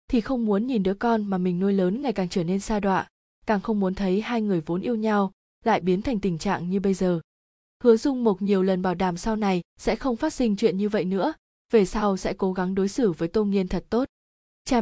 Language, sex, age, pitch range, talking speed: Vietnamese, female, 20-39, 185-230 Hz, 255 wpm